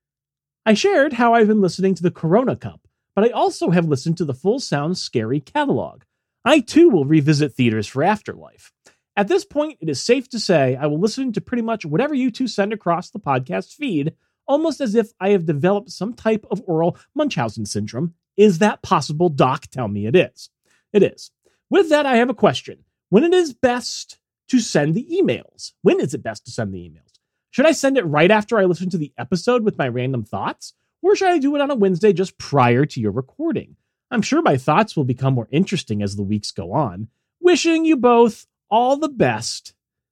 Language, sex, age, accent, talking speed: English, male, 30-49, American, 210 wpm